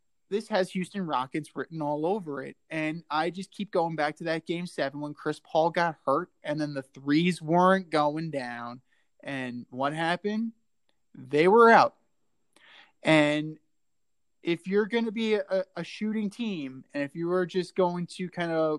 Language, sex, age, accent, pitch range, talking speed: English, male, 20-39, American, 150-190 Hz, 175 wpm